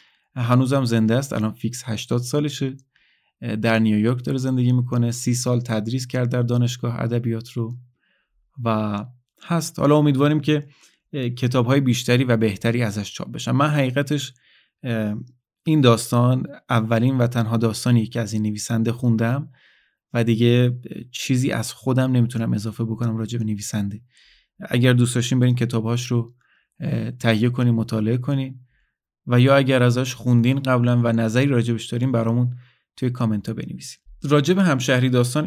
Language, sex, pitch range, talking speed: Persian, male, 115-130 Hz, 145 wpm